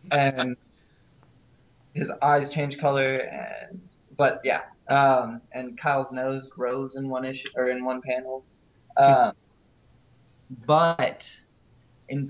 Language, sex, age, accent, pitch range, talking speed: English, male, 20-39, American, 125-145 Hz, 110 wpm